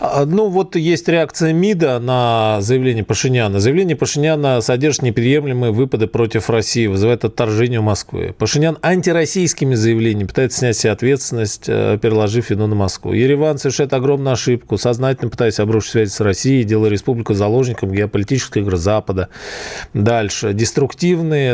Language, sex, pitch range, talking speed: Russian, male, 105-130 Hz, 130 wpm